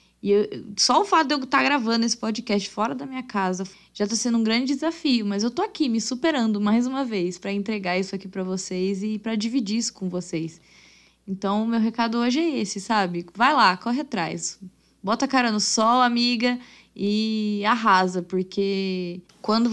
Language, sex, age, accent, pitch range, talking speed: Portuguese, female, 10-29, Brazilian, 195-235 Hz, 200 wpm